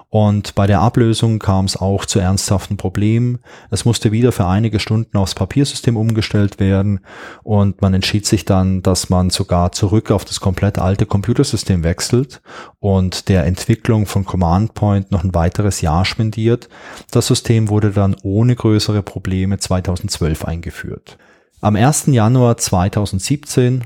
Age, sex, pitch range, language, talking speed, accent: 20-39, male, 95-115 Hz, German, 150 wpm, German